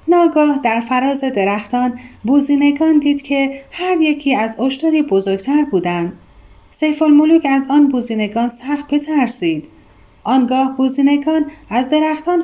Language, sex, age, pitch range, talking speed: Persian, female, 30-49, 225-295 Hz, 115 wpm